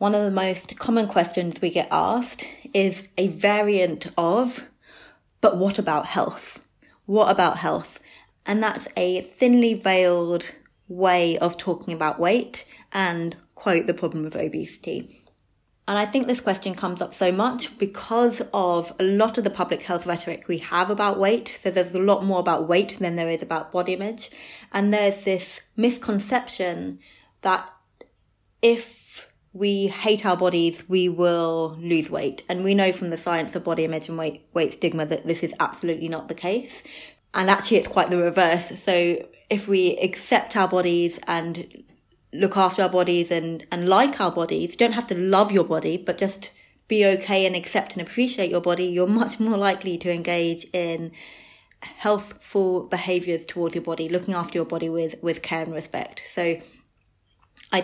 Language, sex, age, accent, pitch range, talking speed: English, female, 20-39, British, 170-200 Hz, 175 wpm